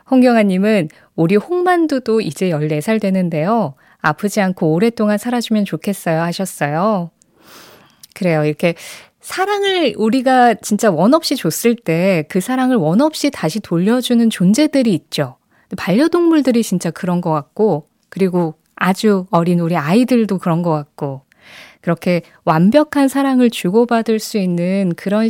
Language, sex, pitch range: Korean, female, 175-245 Hz